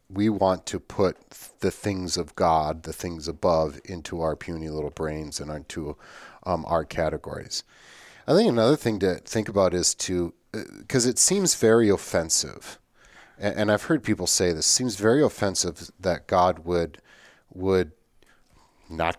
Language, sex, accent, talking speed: English, male, American, 160 wpm